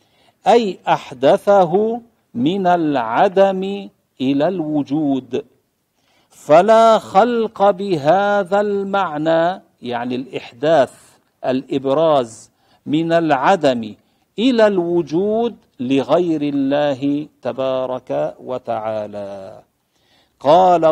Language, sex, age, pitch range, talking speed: Arabic, male, 50-69, 150-220 Hz, 65 wpm